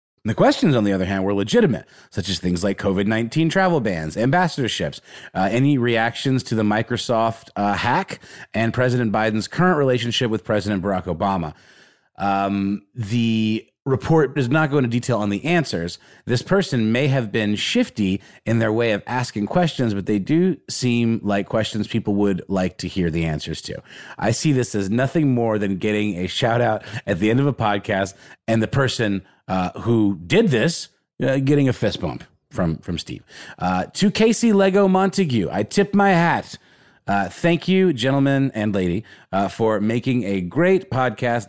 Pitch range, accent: 100-145 Hz, American